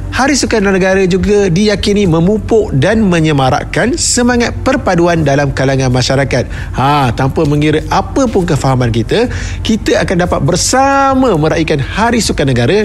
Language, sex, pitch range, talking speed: Malay, male, 145-215 Hz, 130 wpm